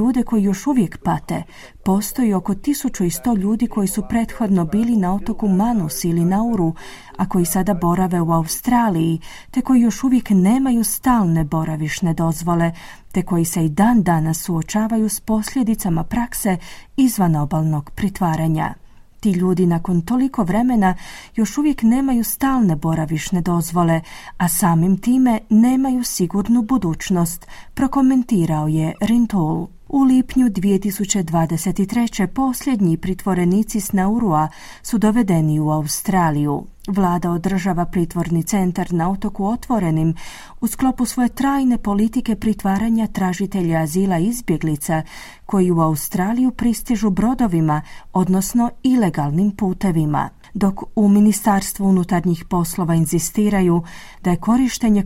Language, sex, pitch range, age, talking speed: Croatian, female, 170-230 Hz, 30-49, 115 wpm